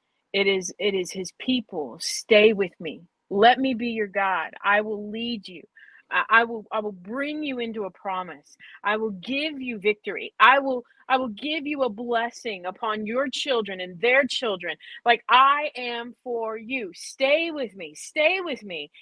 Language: English